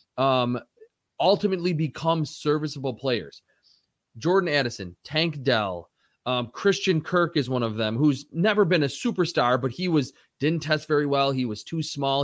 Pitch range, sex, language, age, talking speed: 130-165 Hz, male, English, 20-39, 155 wpm